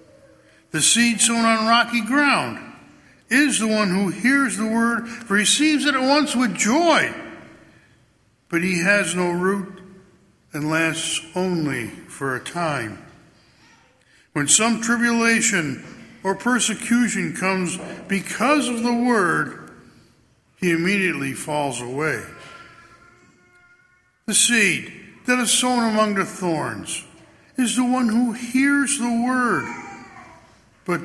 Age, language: 60-79, English